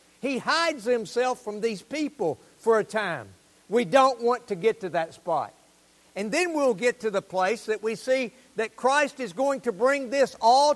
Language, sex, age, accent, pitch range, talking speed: English, male, 60-79, American, 200-275 Hz, 195 wpm